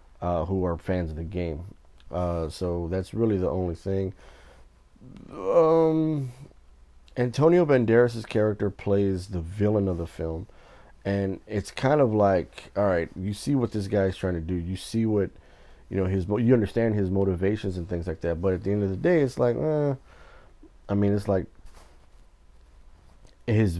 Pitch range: 85-105 Hz